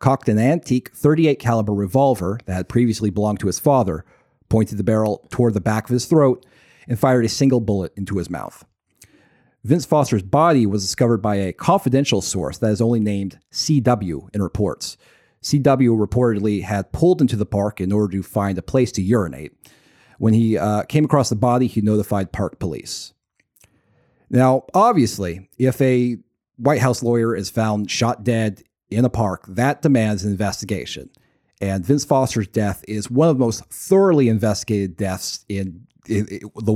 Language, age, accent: English, 40-59, American